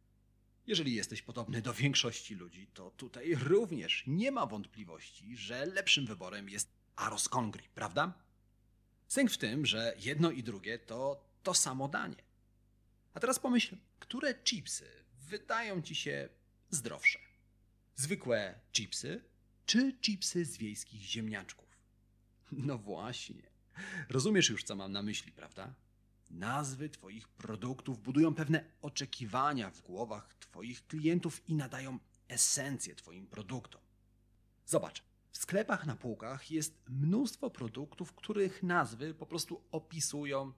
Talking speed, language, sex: 125 wpm, Polish, male